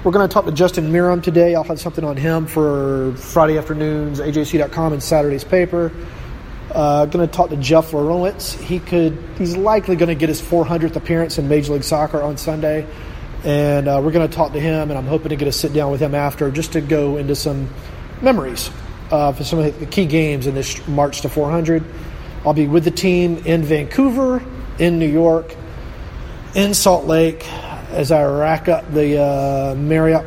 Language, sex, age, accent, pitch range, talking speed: English, male, 30-49, American, 145-170 Hz, 200 wpm